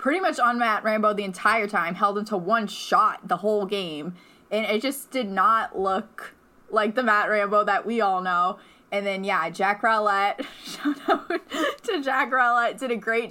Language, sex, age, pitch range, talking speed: English, female, 10-29, 185-225 Hz, 190 wpm